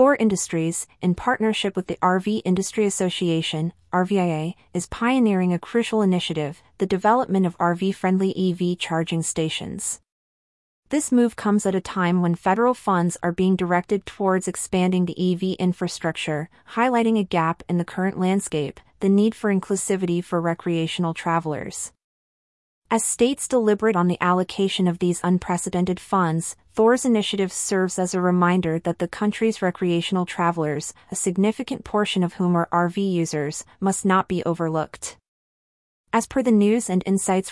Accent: American